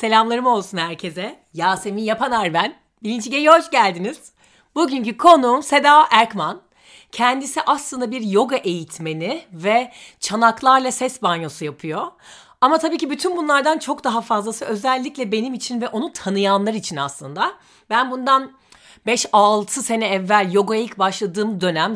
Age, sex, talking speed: 40-59, female, 130 wpm